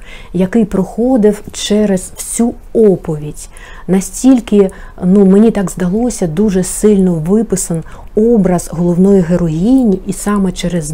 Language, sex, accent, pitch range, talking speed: Ukrainian, female, native, 185-215 Hz, 100 wpm